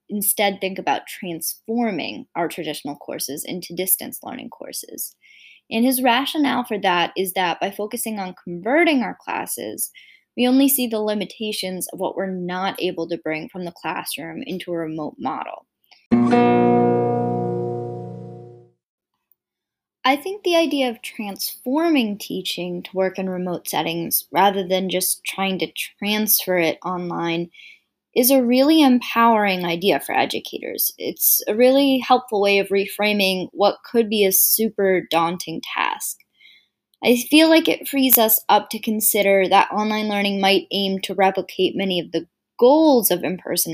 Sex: female